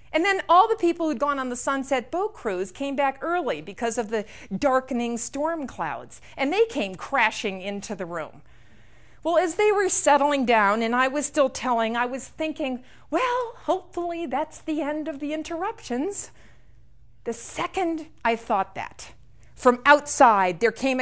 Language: English